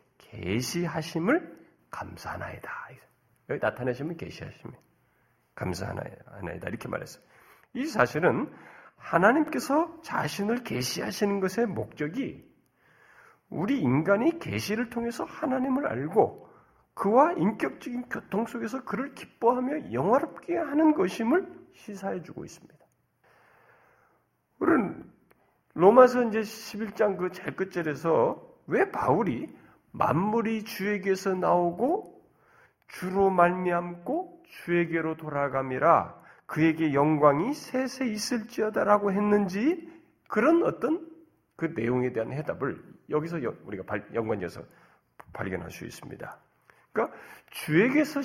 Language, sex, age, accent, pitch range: Korean, male, 40-59, native, 170-275 Hz